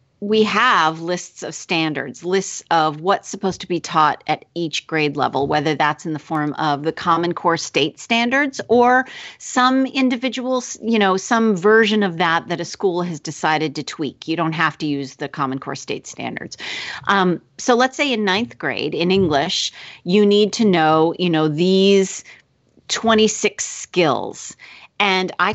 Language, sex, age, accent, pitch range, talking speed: English, female, 40-59, American, 155-205 Hz, 170 wpm